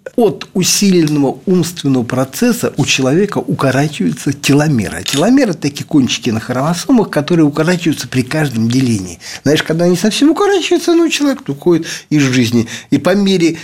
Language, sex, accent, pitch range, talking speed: Russian, male, native, 115-160 Hz, 140 wpm